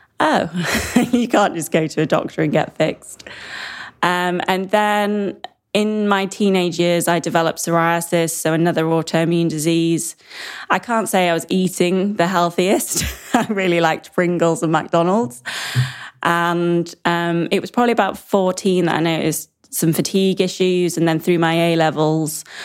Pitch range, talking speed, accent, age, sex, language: 160-185 Hz, 150 wpm, British, 20-39, female, English